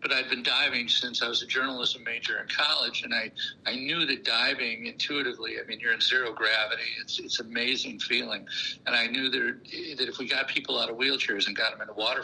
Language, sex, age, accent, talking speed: English, male, 60-79, American, 235 wpm